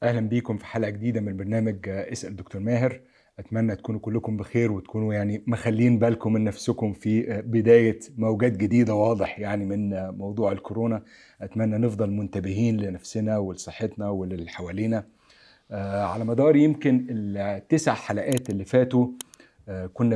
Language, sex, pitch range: Arabic, male, 100-120 Hz